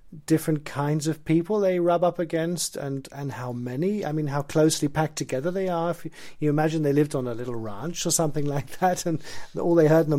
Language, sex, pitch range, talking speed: Danish, male, 145-170 Hz, 235 wpm